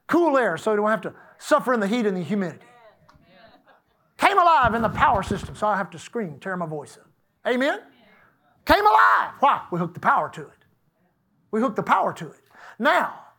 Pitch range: 195-270 Hz